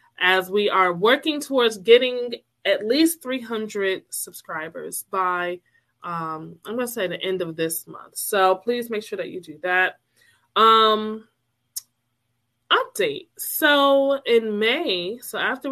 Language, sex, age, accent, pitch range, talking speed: English, female, 20-39, American, 185-250 Hz, 135 wpm